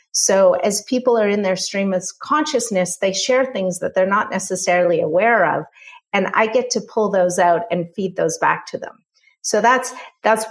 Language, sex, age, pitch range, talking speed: English, female, 40-59, 180-225 Hz, 195 wpm